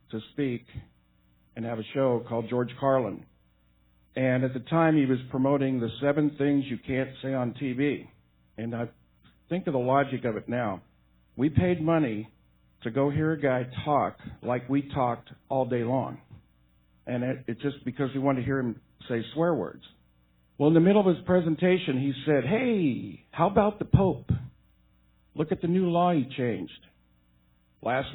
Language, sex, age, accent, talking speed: English, male, 50-69, American, 175 wpm